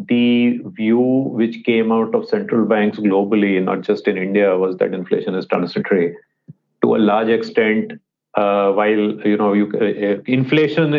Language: English